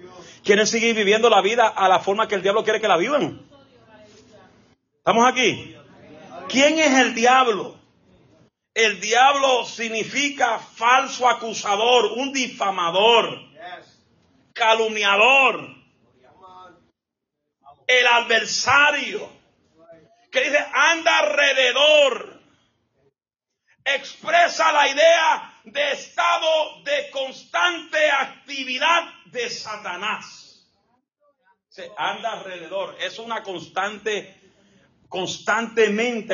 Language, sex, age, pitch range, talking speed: Spanish, male, 30-49, 165-260 Hz, 85 wpm